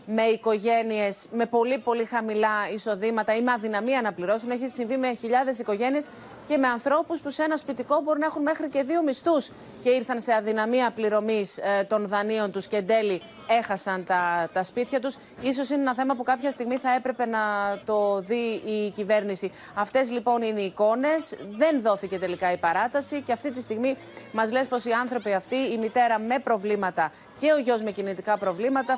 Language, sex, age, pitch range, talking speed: Greek, female, 30-49, 205-255 Hz, 185 wpm